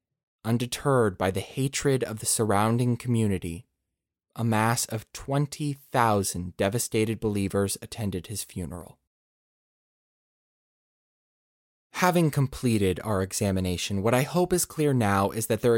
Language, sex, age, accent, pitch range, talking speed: English, male, 20-39, American, 110-160 Hz, 115 wpm